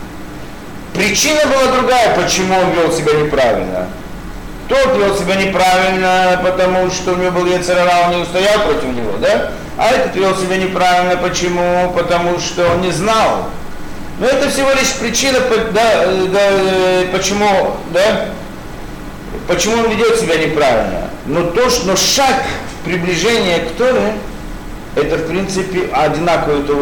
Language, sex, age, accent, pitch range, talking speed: Russian, male, 50-69, native, 115-190 Hz, 145 wpm